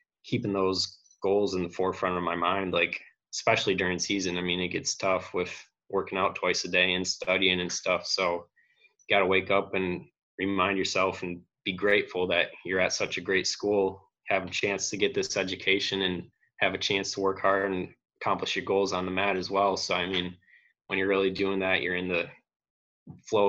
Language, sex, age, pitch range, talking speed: English, male, 20-39, 90-100 Hz, 210 wpm